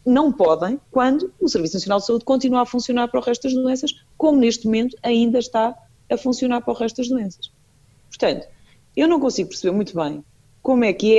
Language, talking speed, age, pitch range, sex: Portuguese, 210 wpm, 30-49, 165-255 Hz, female